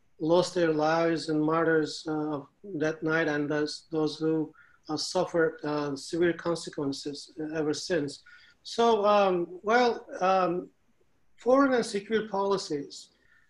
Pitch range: 160-190 Hz